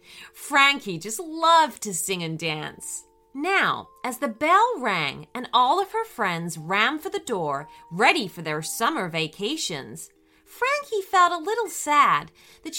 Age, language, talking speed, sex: 30-49, English, 150 wpm, female